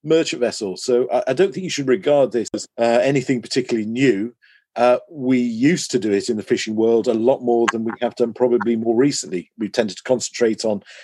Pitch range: 115-150 Hz